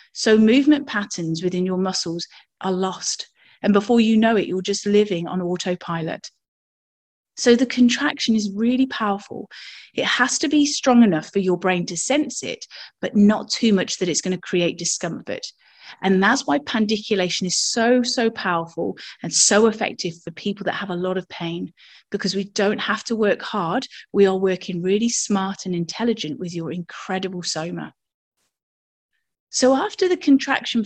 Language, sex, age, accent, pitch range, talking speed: English, female, 30-49, British, 185-245 Hz, 170 wpm